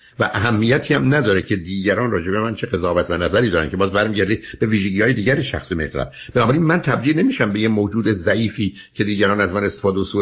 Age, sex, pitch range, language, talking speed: 60-79, male, 100-130 Hz, Persian, 215 wpm